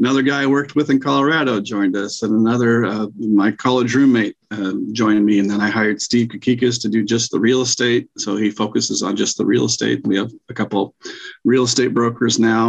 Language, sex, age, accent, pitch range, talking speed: English, male, 50-69, American, 105-120 Hz, 220 wpm